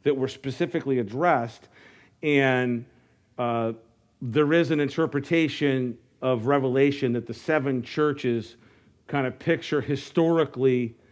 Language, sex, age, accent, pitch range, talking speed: English, male, 50-69, American, 120-155 Hz, 110 wpm